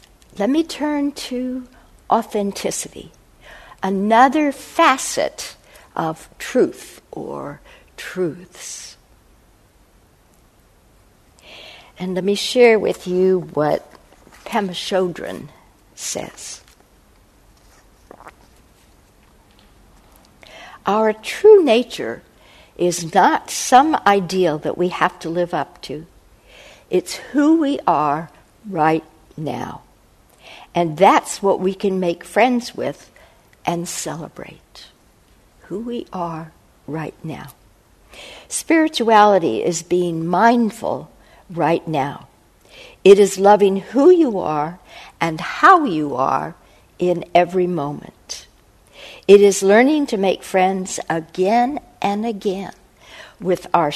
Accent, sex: American, female